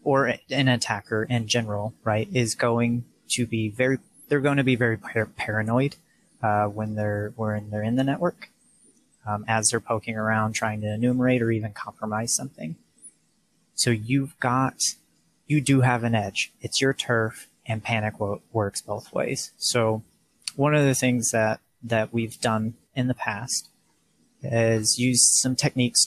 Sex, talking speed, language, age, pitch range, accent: male, 165 wpm, English, 30-49, 110-125 Hz, American